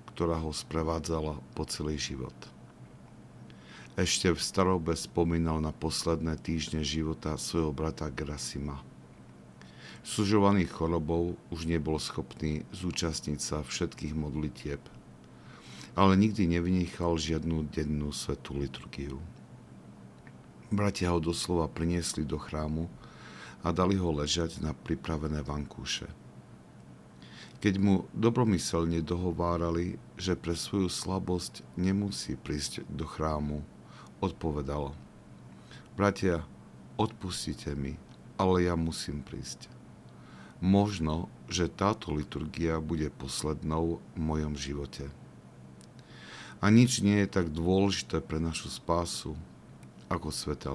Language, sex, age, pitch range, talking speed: Slovak, male, 50-69, 70-85 Hz, 100 wpm